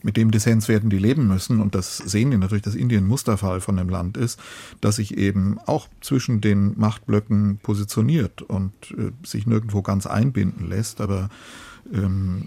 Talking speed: 175 wpm